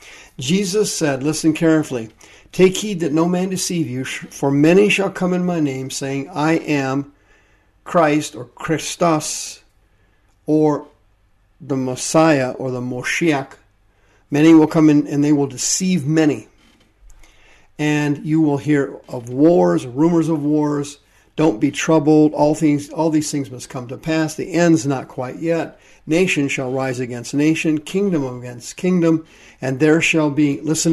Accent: American